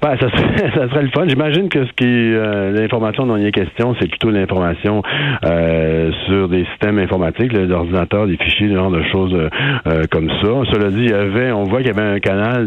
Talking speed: 225 wpm